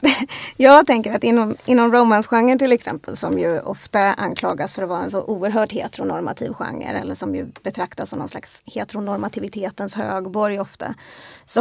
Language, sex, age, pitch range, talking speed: Swedish, female, 30-49, 200-240 Hz, 160 wpm